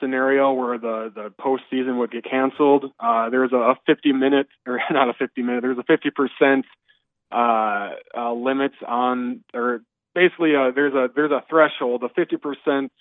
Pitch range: 120-140 Hz